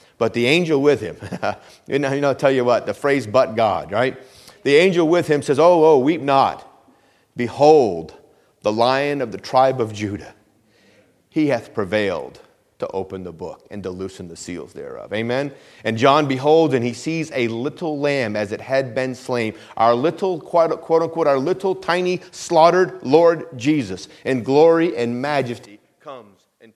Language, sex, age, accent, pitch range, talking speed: English, male, 40-59, American, 120-170 Hz, 175 wpm